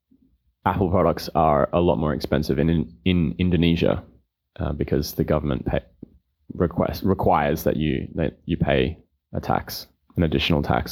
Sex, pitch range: male, 80-100 Hz